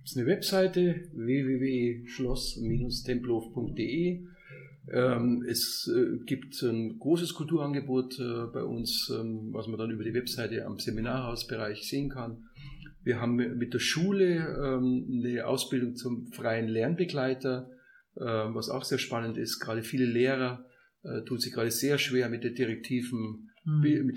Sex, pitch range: male, 115-140 Hz